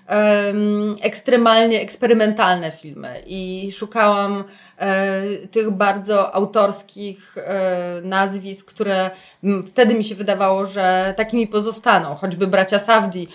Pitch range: 190-245 Hz